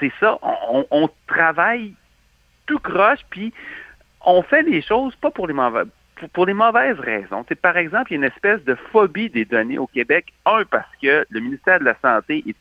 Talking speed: 210 wpm